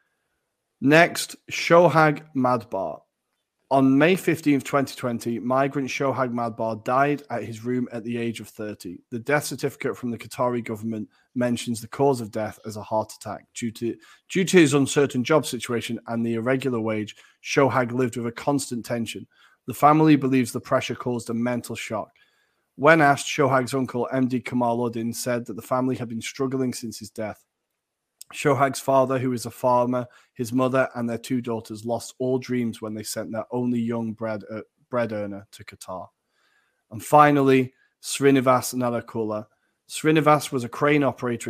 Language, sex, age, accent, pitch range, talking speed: English, male, 30-49, British, 115-130 Hz, 165 wpm